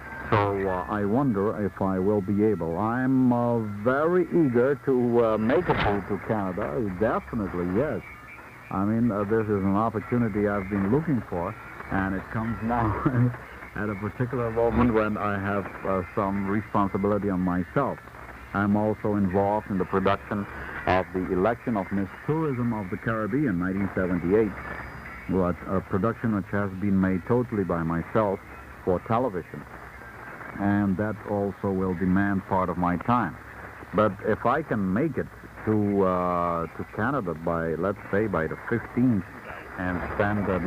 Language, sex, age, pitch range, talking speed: Italian, male, 60-79, 90-110 Hz, 155 wpm